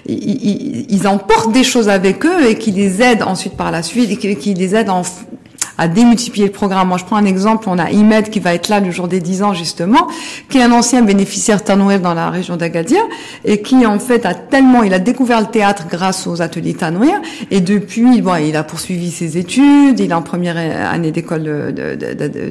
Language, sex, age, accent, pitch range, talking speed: French, female, 50-69, French, 190-250 Hz, 225 wpm